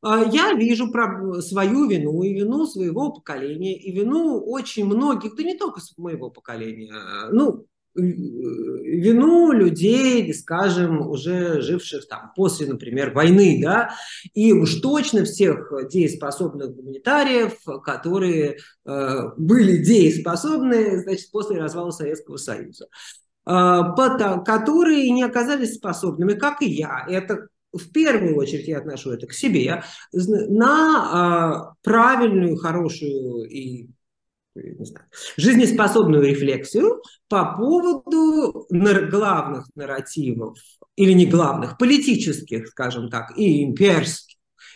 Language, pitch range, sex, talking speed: Russian, 155-235 Hz, male, 100 wpm